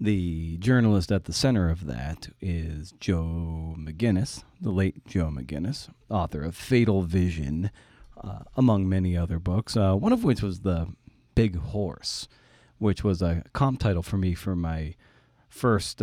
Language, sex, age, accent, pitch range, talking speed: English, male, 40-59, American, 90-115 Hz, 155 wpm